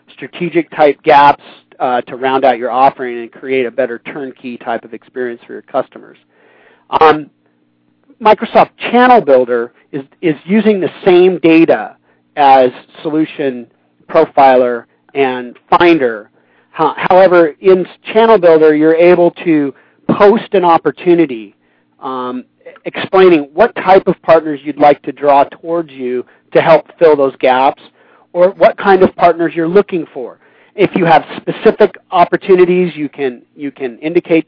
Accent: American